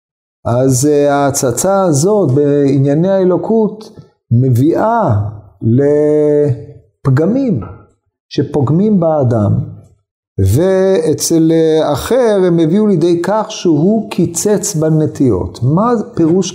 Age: 50-69